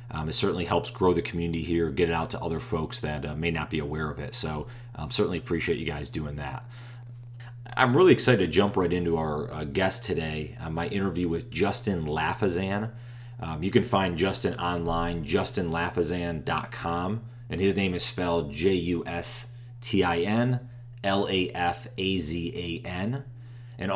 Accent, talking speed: American, 155 wpm